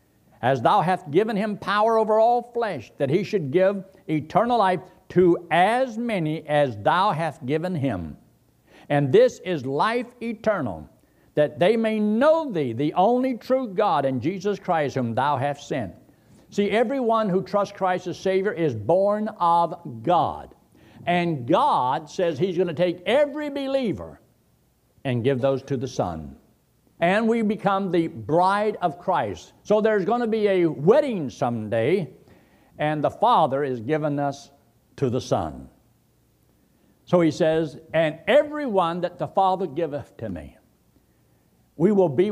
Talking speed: 155 wpm